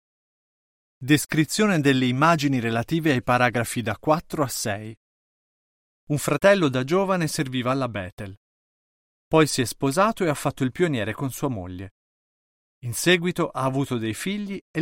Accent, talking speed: native, 145 wpm